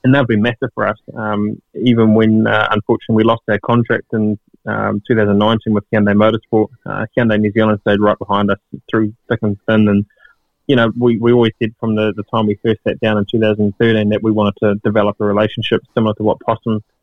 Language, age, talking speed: English, 20-39, 220 wpm